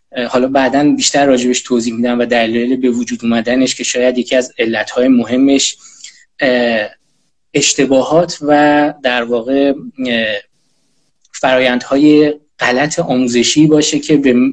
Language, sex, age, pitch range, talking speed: Persian, male, 20-39, 120-150 Hz, 115 wpm